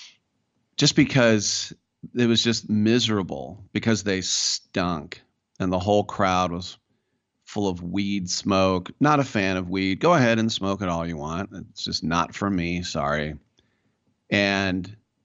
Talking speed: 150 wpm